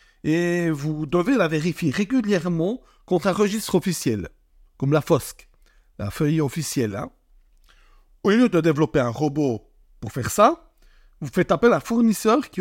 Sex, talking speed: male, 155 wpm